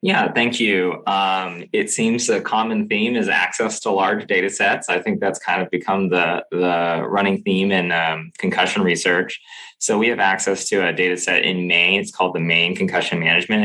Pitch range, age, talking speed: 85-105 Hz, 20-39, 200 wpm